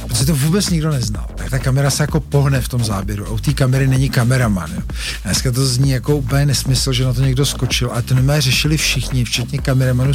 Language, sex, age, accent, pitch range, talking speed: Czech, male, 50-69, native, 120-135 Hz, 225 wpm